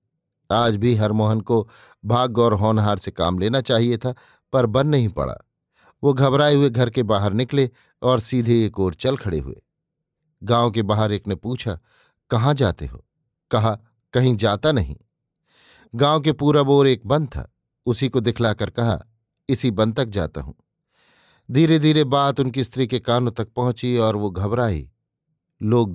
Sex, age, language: male, 50-69, Hindi